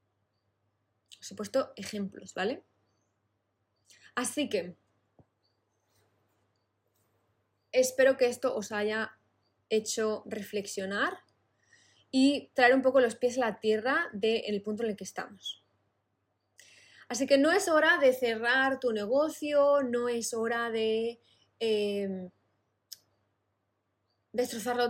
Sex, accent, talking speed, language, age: female, Spanish, 105 wpm, Spanish, 20-39